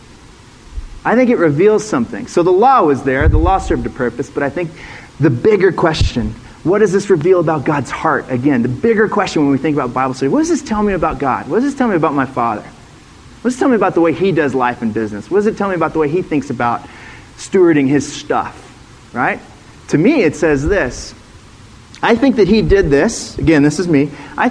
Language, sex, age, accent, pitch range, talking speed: English, male, 30-49, American, 130-190 Hz, 235 wpm